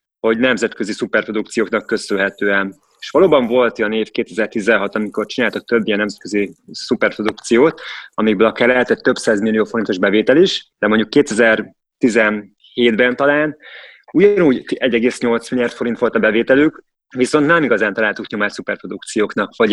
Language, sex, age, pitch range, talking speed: Hungarian, male, 20-39, 105-120 Hz, 125 wpm